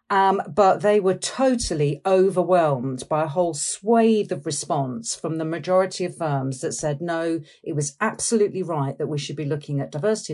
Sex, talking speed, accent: female, 180 wpm, British